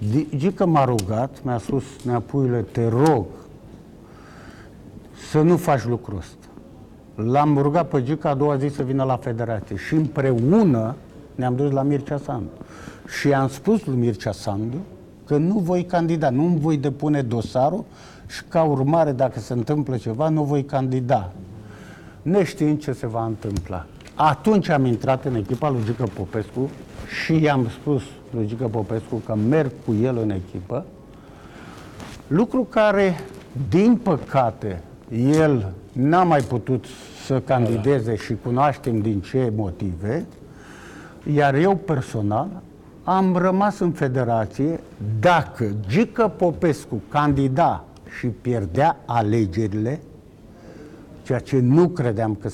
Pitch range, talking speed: 110-150 Hz, 130 wpm